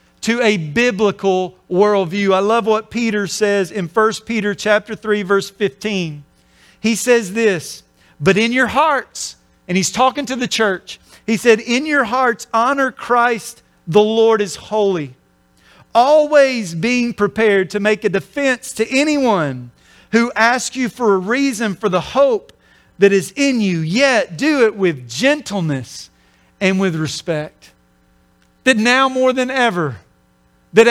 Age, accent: 40-59, American